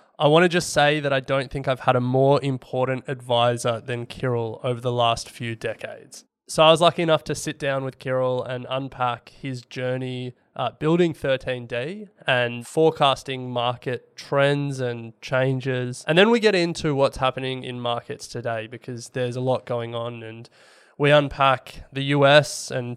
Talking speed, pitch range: 175 wpm, 120-140 Hz